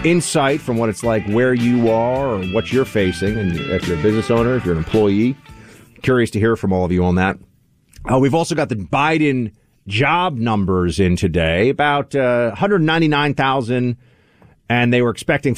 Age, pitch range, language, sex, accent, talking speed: 40-59, 100-135 Hz, English, male, American, 185 wpm